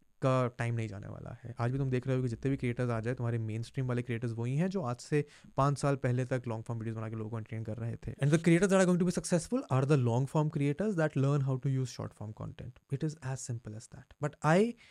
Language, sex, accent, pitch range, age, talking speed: Hindi, male, native, 115-145 Hz, 20-39, 290 wpm